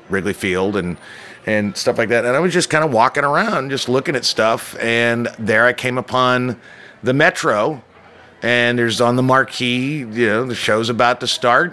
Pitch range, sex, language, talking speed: 110-135 Hz, male, English, 195 wpm